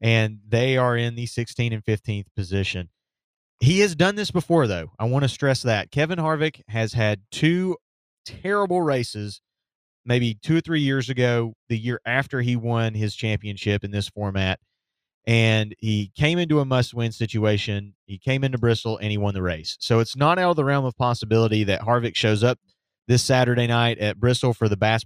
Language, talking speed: English, 195 wpm